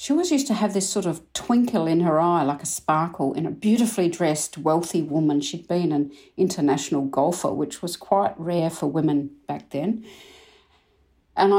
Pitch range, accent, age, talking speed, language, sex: 160-225 Hz, Australian, 50-69, 180 wpm, English, female